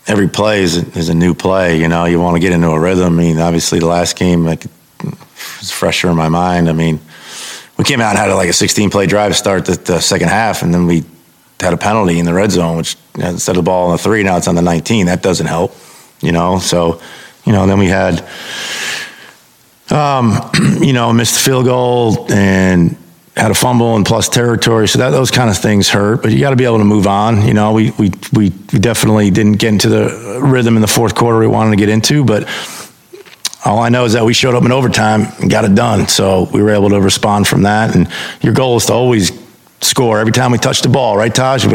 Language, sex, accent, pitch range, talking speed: English, male, American, 90-115 Hz, 250 wpm